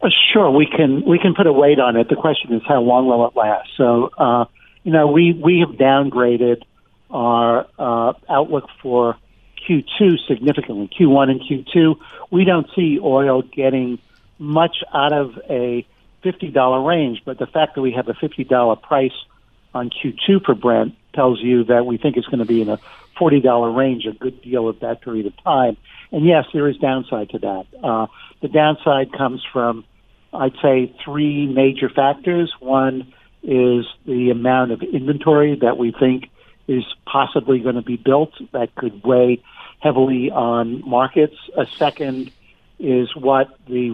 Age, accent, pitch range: 60-79, American, 120-145 Hz